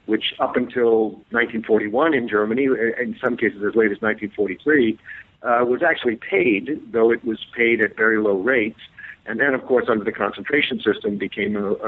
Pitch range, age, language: 110-130 Hz, 50-69, English